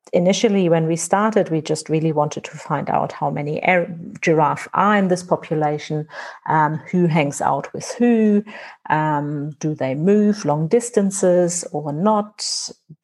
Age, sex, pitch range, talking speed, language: 50-69, female, 150-190 Hz, 150 wpm, English